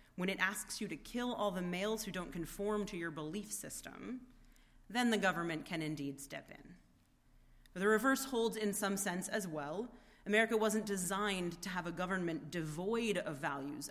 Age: 30-49